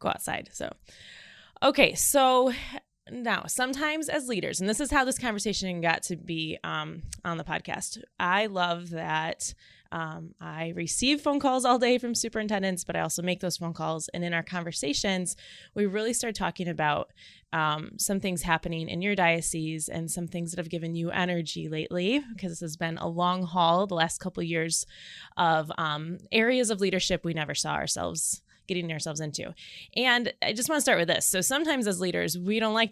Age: 20-39